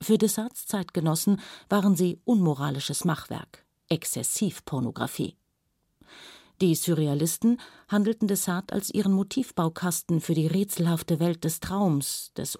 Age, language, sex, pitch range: 50-69, German, female, 160-200 Hz